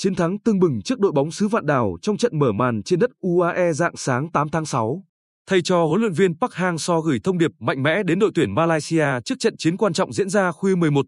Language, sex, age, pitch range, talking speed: Vietnamese, male, 20-39, 145-195 Hz, 255 wpm